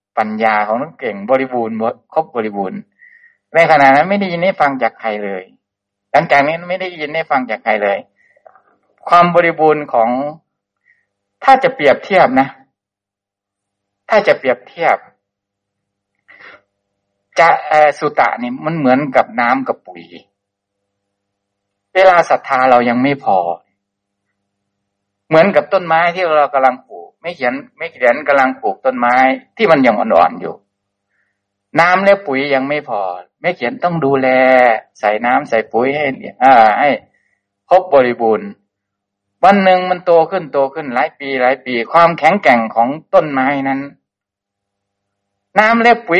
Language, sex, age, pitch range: Thai, male, 60-79, 100-170 Hz